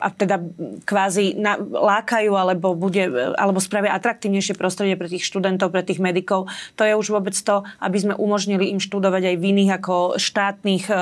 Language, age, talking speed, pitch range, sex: Slovak, 30-49, 170 wpm, 195-215 Hz, female